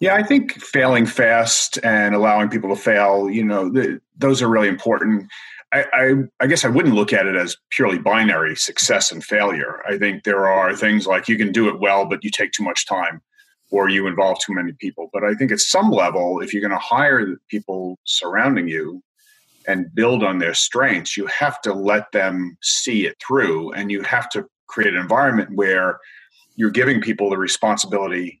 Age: 40-59